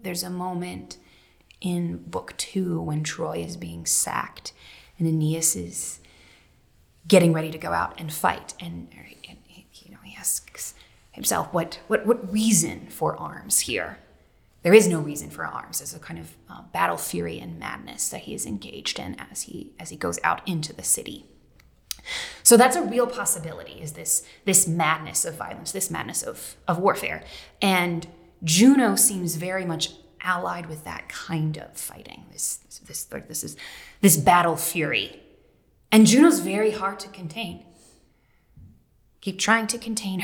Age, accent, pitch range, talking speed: 20-39, American, 155-195 Hz, 165 wpm